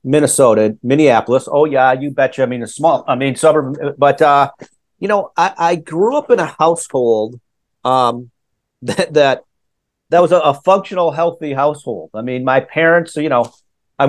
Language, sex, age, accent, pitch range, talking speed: English, male, 40-59, American, 135-170 Hz, 175 wpm